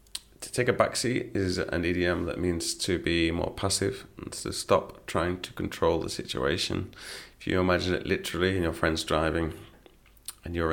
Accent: British